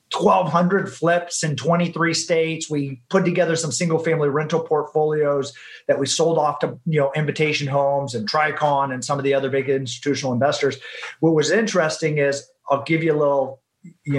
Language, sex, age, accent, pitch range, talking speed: English, male, 30-49, American, 145-175 Hz, 180 wpm